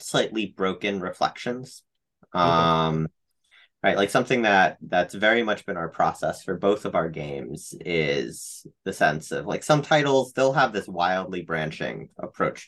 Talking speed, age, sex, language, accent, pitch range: 150 wpm, 30-49, male, English, American, 85-120 Hz